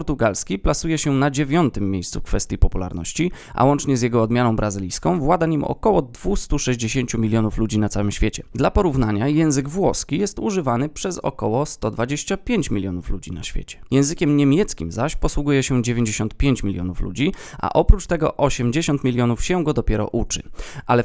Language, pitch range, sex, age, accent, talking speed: Polish, 110-150 Hz, male, 20-39, native, 155 wpm